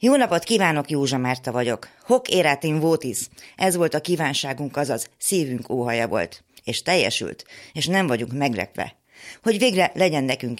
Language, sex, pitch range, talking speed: Hungarian, female, 120-165 Hz, 160 wpm